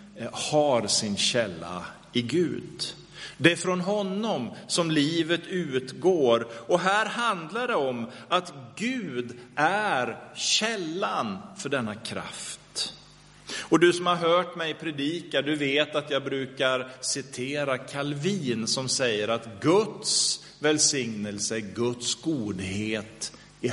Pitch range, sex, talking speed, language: 125-175 Hz, male, 115 wpm, Swedish